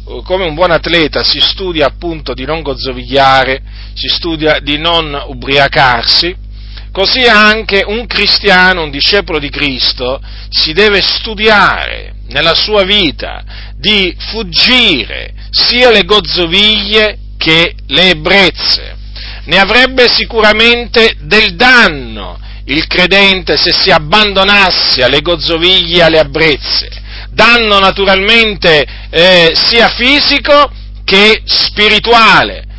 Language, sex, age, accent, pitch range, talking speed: Italian, male, 40-59, native, 140-220 Hz, 110 wpm